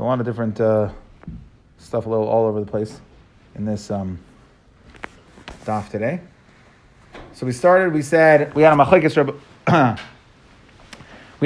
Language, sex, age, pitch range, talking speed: English, male, 30-49, 135-195 Hz, 120 wpm